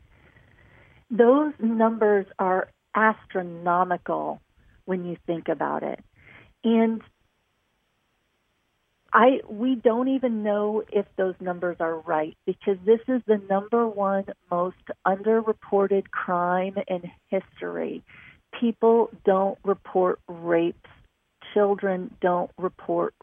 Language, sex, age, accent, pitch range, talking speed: English, female, 40-59, American, 185-215 Hz, 100 wpm